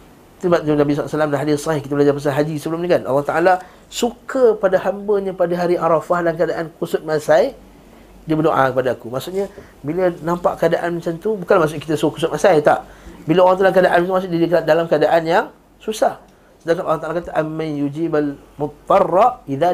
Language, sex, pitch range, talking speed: Malay, male, 155-195 Hz, 185 wpm